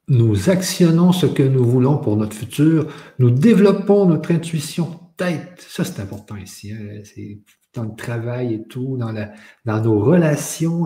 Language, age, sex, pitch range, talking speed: French, 50-69, male, 115-150 Hz, 165 wpm